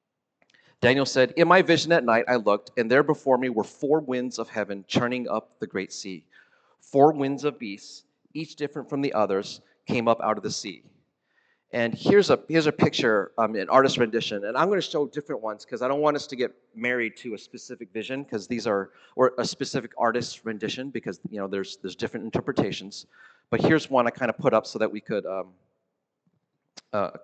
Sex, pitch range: male, 115-145 Hz